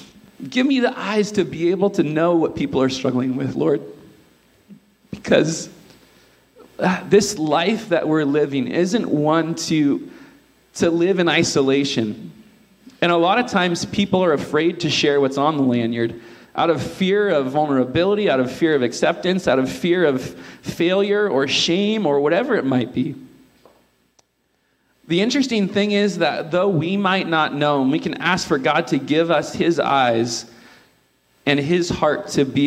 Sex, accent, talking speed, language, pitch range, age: male, American, 165 wpm, English, 130-190 Hz, 40-59